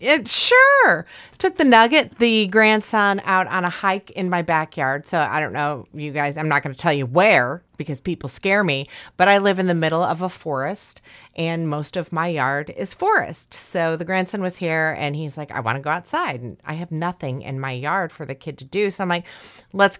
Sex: female